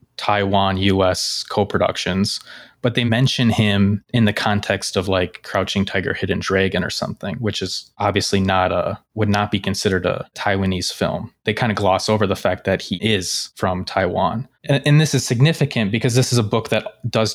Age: 20-39